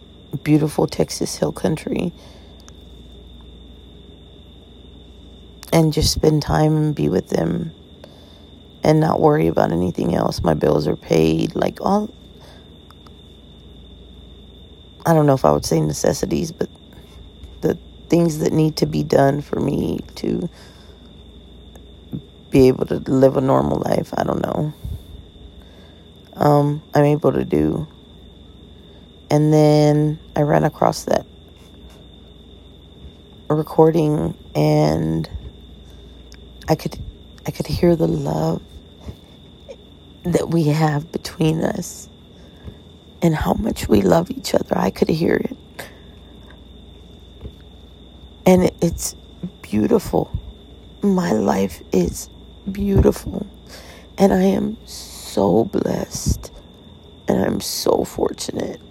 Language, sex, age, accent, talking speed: English, female, 40-59, American, 105 wpm